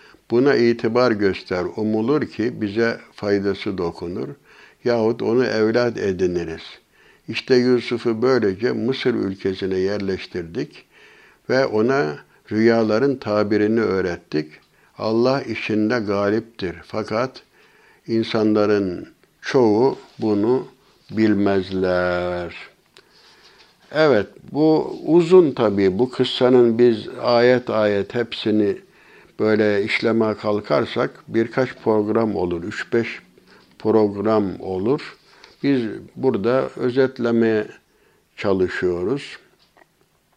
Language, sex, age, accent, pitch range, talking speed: Turkish, male, 60-79, native, 105-120 Hz, 80 wpm